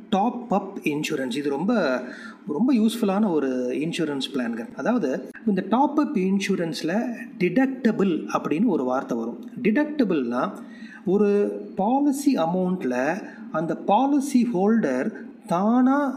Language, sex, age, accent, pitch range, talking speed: Tamil, male, 30-49, native, 175-245 Hz, 105 wpm